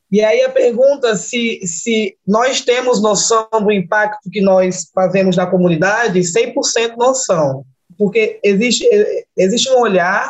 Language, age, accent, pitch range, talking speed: Portuguese, 20-39, Brazilian, 190-235 Hz, 135 wpm